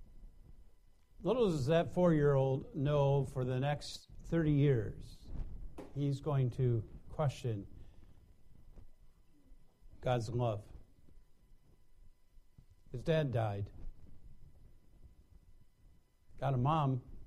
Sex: male